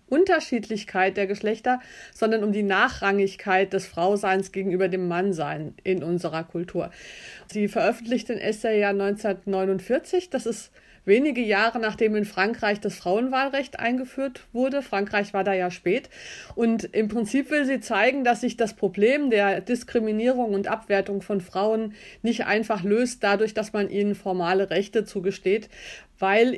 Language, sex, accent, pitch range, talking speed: German, female, German, 195-230 Hz, 145 wpm